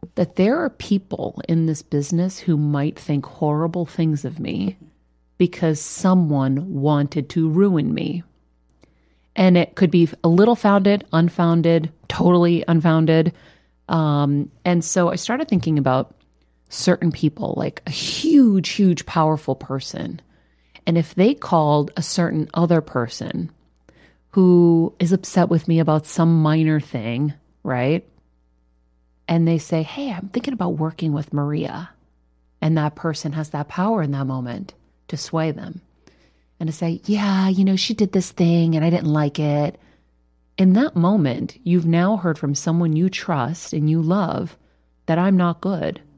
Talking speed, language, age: 155 wpm, English, 40-59